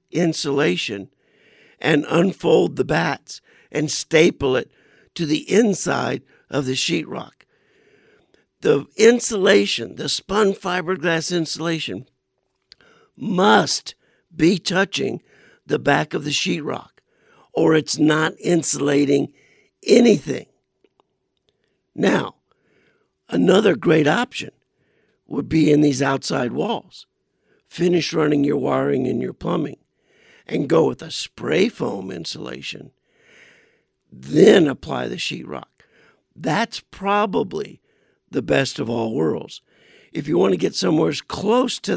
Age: 60-79